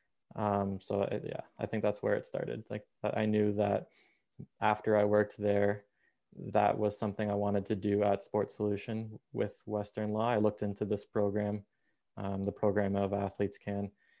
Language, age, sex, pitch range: English, 20-39, male, 100-105 Hz